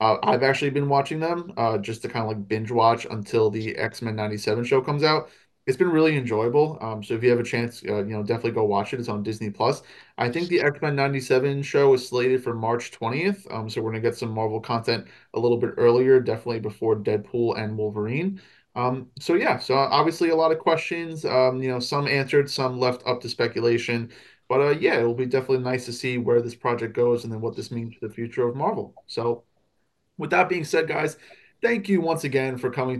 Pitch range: 115-140 Hz